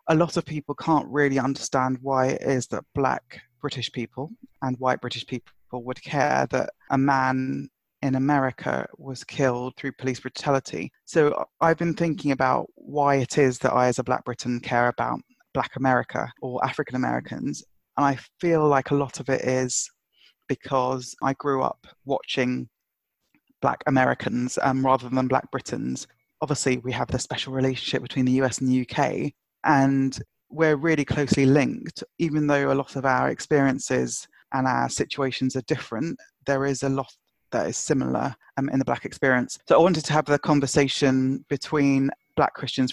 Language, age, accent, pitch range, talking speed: English, 20-39, British, 130-145 Hz, 170 wpm